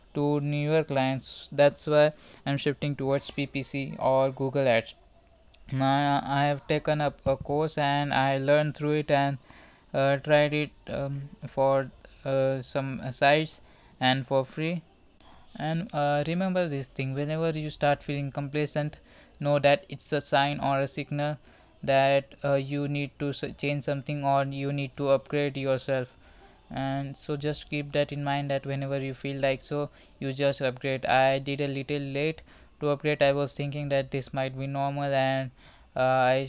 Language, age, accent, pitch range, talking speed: Hindi, 20-39, native, 135-145 Hz, 170 wpm